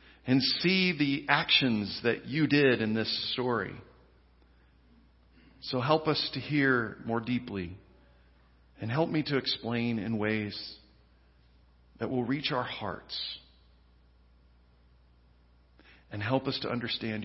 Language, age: English, 50-69